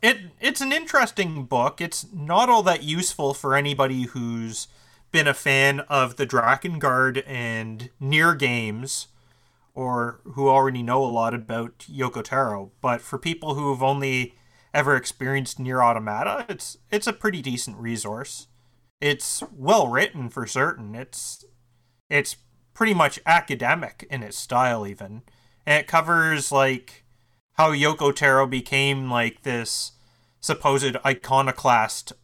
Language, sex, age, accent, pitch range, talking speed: English, male, 30-49, American, 120-150 Hz, 135 wpm